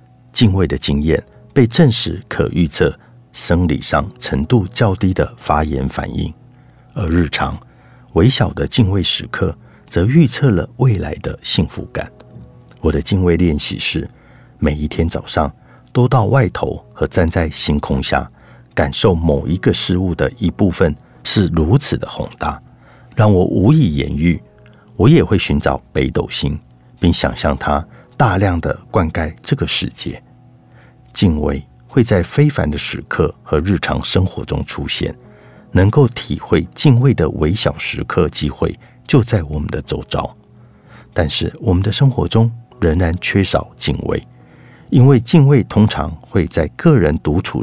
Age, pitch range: 50-69, 80-125 Hz